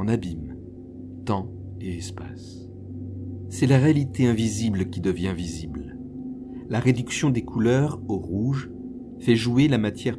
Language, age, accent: French, 50-69, French